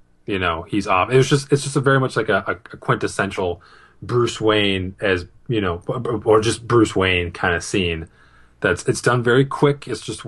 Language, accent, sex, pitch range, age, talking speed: English, American, male, 95-120 Hz, 20-39, 200 wpm